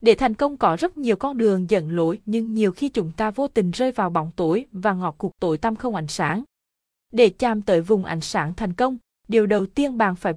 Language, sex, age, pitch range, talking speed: Vietnamese, female, 20-39, 175-235 Hz, 245 wpm